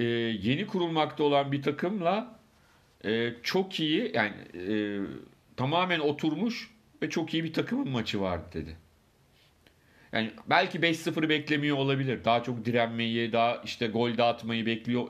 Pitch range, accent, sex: 115-145 Hz, native, male